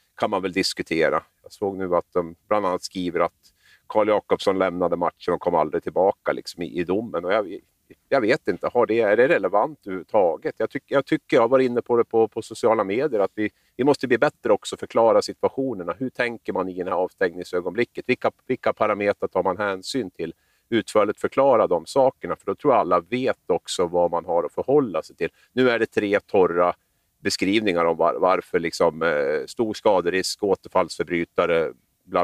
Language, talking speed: Swedish, 190 wpm